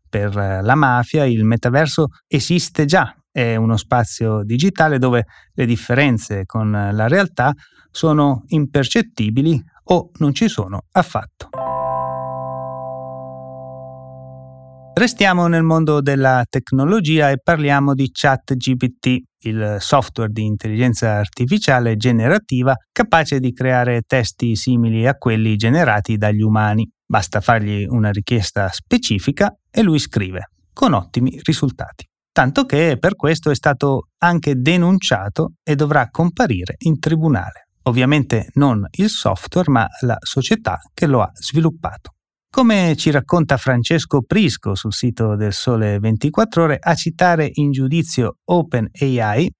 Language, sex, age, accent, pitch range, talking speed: Italian, male, 30-49, native, 110-155 Hz, 120 wpm